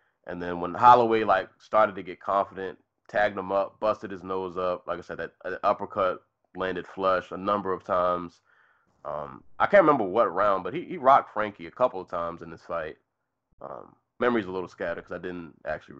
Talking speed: 205 wpm